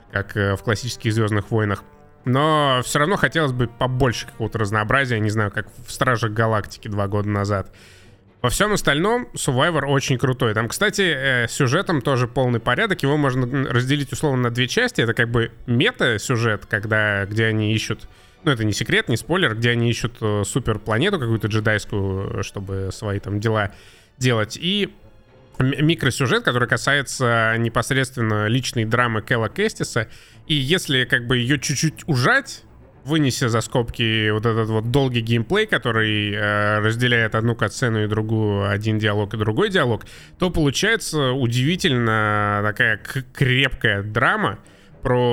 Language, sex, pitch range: Russian, male, 110-135 Hz